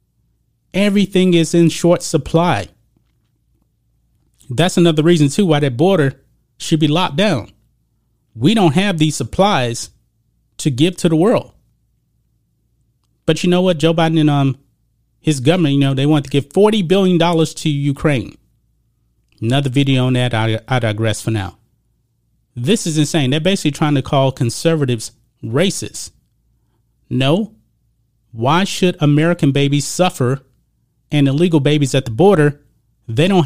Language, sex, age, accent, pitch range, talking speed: English, male, 30-49, American, 120-165 Hz, 145 wpm